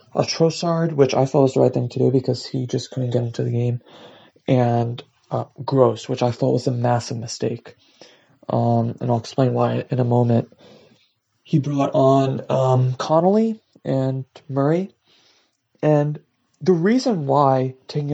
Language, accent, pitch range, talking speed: English, American, 130-160 Hz, 160 wpm